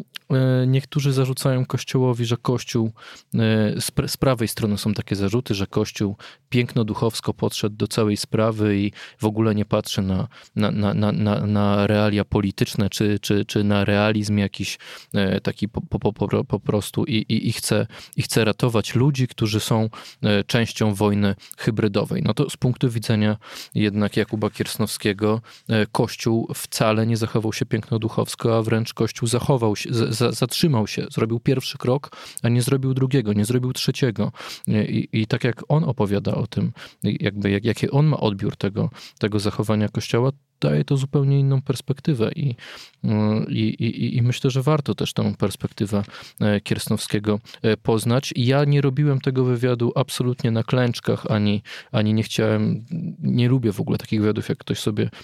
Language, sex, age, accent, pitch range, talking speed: Polish, male, 20-39, native, 105-135 Hz, 150 wpm